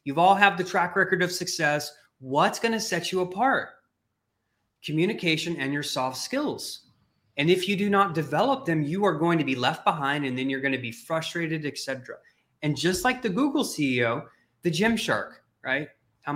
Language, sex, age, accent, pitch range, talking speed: English, male, 20-39, American, 130-185 Hz, 190 wpm